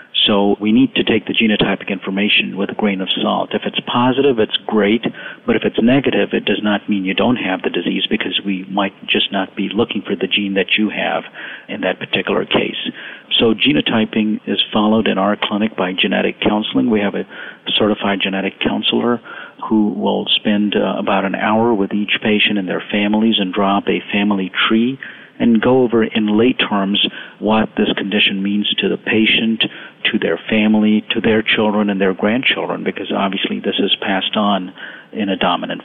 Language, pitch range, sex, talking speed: English, 100-110 Hz, male, 190 wpm